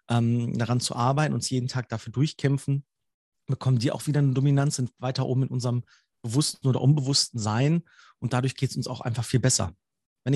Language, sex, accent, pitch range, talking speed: German, male, German, 125-145 Hz, 190 wpm